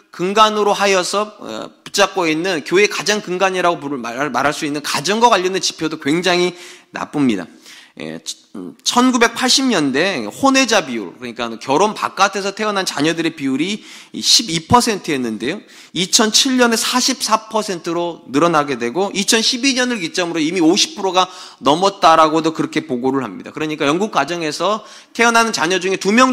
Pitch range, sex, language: 155-225 Hz, male, Korean